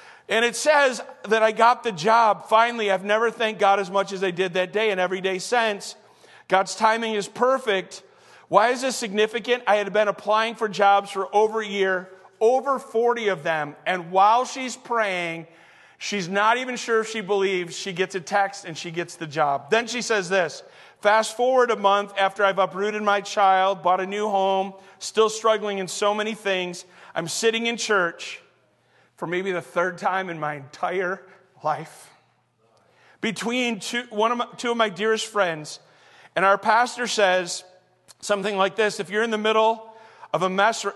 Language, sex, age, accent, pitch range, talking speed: English, male, 40-59, American, 185-225 Hz, 190 wpm